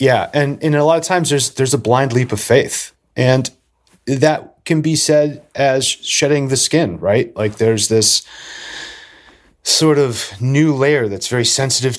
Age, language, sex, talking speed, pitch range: 30-49, English, male, 170 wpm, 105-135 Hz